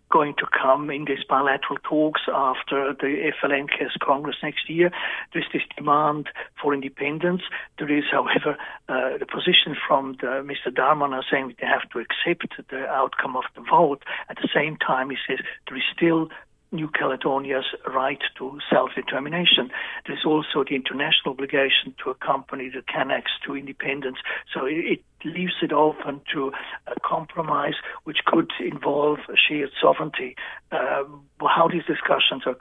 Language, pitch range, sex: English, 135-155 Hz, male